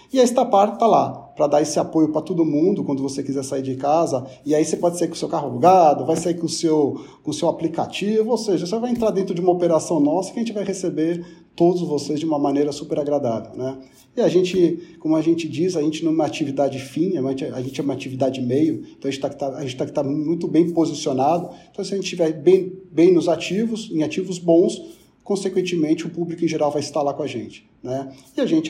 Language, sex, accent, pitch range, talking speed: Portuguese, male, Brazilian, 140-175 Hz, 240 wpm